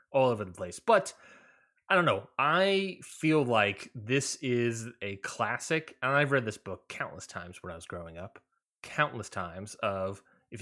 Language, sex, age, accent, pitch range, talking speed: English, male, 20-39, American, 105-135 Hz, 175 wpm